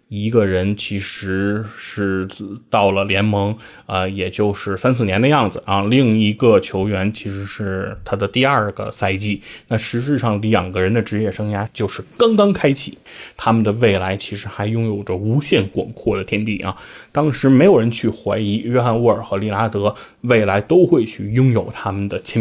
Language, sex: Chinese, male